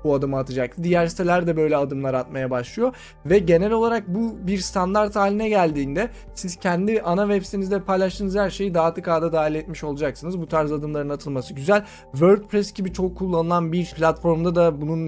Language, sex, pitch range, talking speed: Turkish, male, 155-195 Hz, 175 wpm